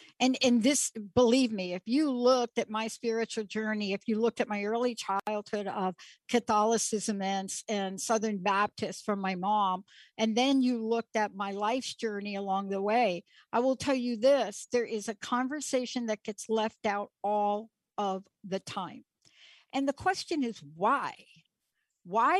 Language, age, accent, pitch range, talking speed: English, 60-79, American, 210-260 Hz, 165 wpm